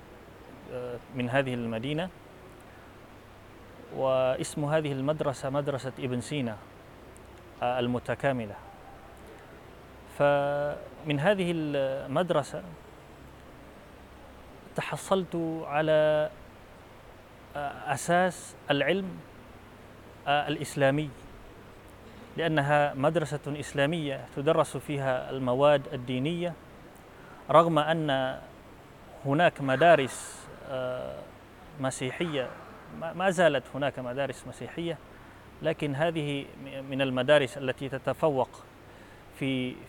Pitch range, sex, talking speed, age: 120-145 Hz, male, 65 wpm, 30-49